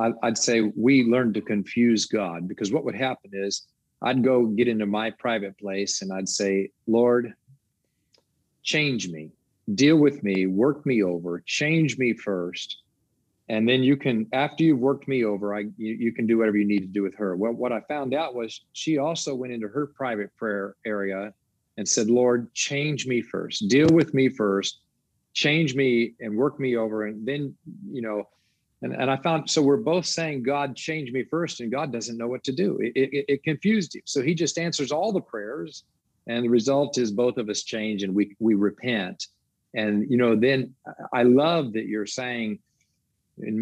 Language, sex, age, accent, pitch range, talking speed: English, male, 40-59, American, 105-135 Hz, 195 wpm